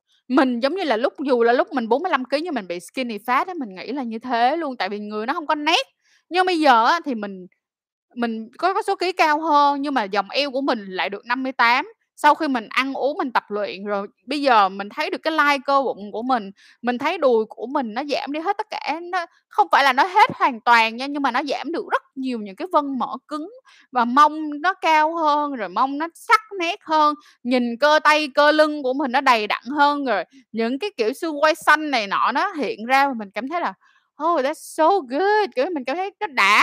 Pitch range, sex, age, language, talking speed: 230-305 Hz, female, 10-29, Vietnamese, 245 wpm